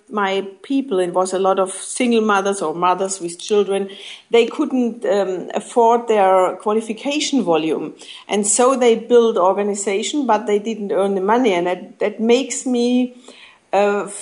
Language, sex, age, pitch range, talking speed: English, female, 50-69, 195-235 Hz, 150 wpm